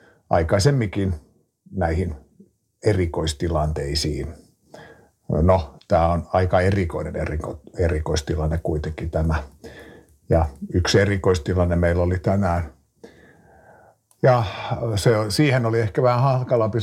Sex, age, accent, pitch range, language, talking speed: male, 50-69, native, 85-105 Hz, Finnish, 85 wpm